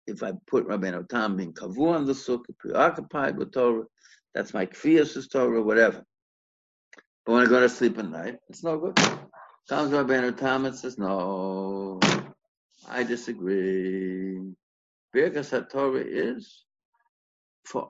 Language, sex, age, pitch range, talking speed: English, male, 60-79, 105-145 Hz, 135 wpm